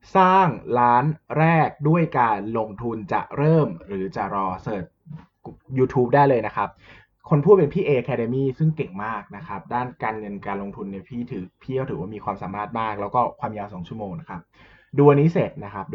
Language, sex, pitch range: Thai, male, 95-140 Hz